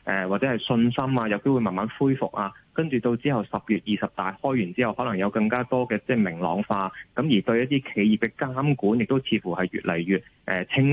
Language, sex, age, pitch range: Chinese, male, 20-39, 100-130 Hz